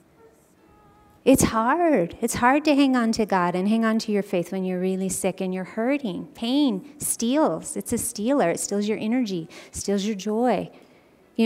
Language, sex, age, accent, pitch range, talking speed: English, female, 30-49, American, 200-245 Hz, 195 wpm